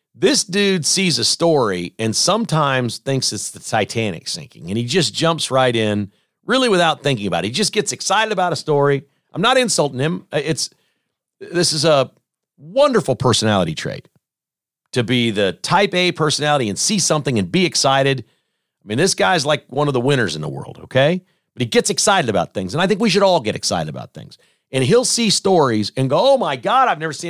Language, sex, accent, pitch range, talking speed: English, male, American, 120-175 Hz, 205 wpm